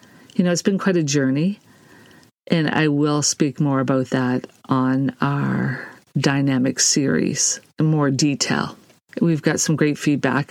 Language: English